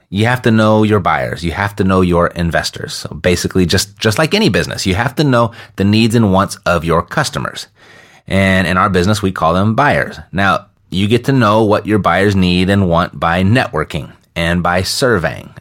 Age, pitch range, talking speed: 30-49, 95-115 Hz, 210 wpm